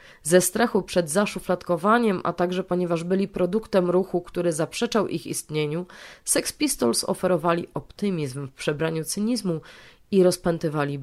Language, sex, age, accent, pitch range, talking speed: Polish, female, 30-49, native, 165-200 Hz, 125 wpm